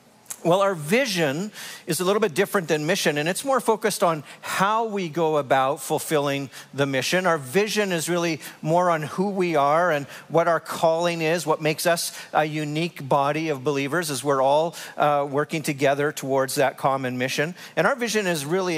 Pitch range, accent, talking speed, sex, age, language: 145-180 Hz, American, 190 wpm, male, 50-69, English